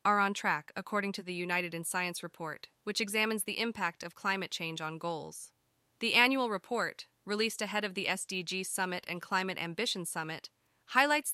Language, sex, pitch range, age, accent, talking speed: English, female, 175-220 Hz, 20-39, American, 175 wpm